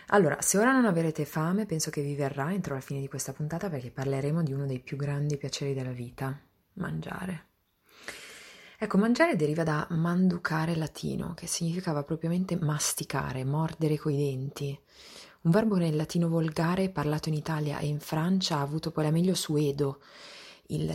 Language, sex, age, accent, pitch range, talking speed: Italian, female, 20-39, native, 145-175 Hz, 165 wpm